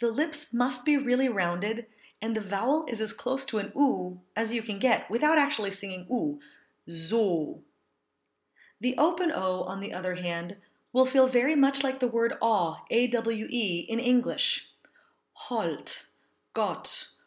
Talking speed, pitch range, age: 150 wpm, 210-275 Hz, 30-49